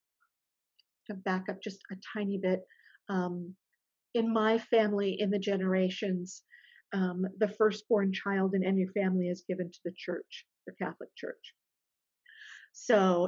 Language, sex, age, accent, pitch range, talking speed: English, female, 50-69, American, 185-210 Hz, 135 wpm